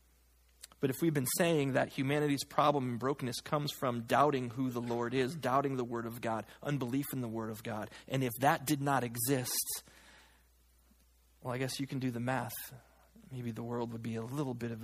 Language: English